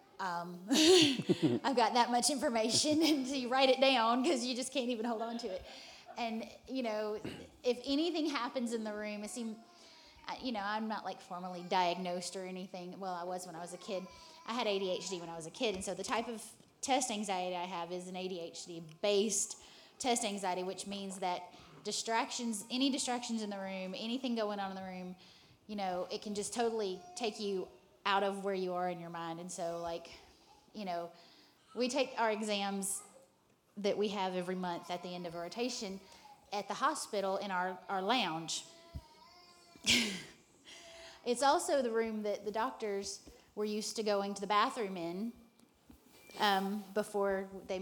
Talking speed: 185 wpm